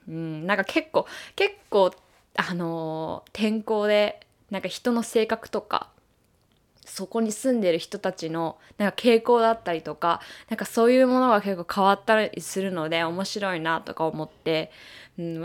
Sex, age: female, 20-39